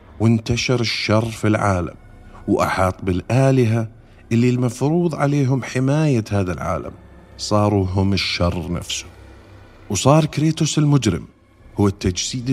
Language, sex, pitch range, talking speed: Arabic, male, 100-140 Hz, 100 wpm